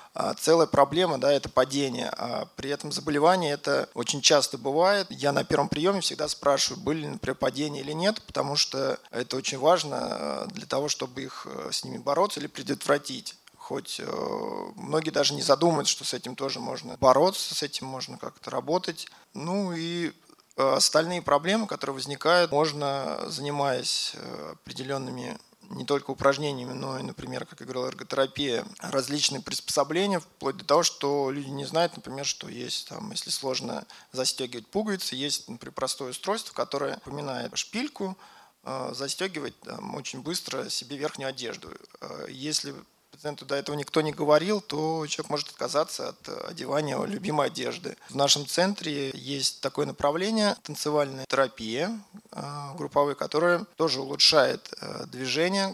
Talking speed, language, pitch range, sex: 145 wpm, Russian, 140-165 Hz, male